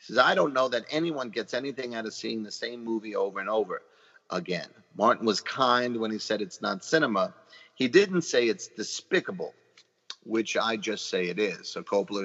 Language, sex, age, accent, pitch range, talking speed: English, male, 50-69, American, 110-145 Hz, 200 wpm